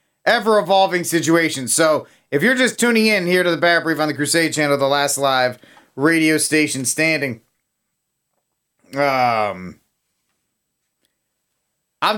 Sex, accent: male, American